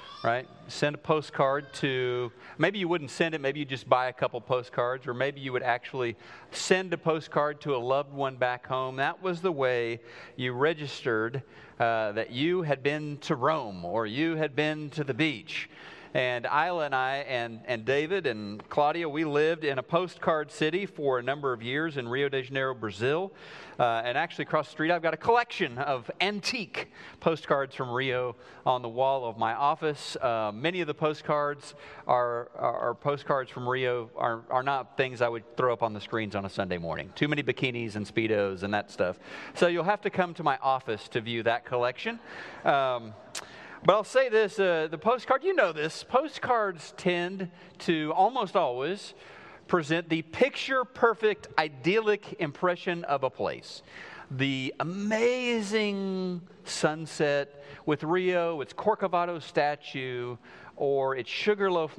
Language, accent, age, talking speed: English, American, 40-59, 170 wpm